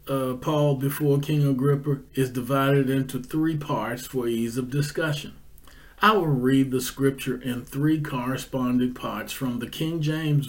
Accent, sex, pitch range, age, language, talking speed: American, male, 120-140 Hz, 40-59, English, 155 wpm